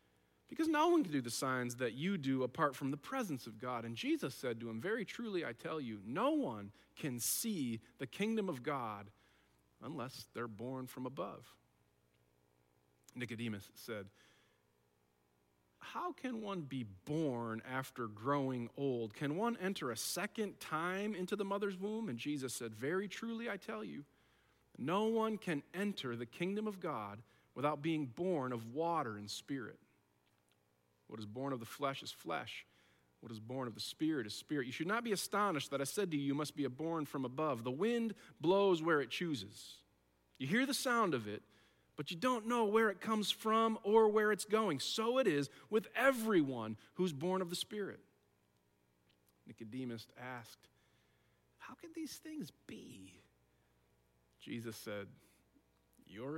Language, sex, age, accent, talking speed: English, male, 40-59, American, 170 wpm